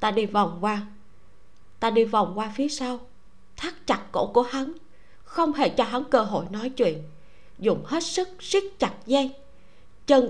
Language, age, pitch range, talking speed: Vietnamese, 20-39, 215-290 Hz, 175 wpm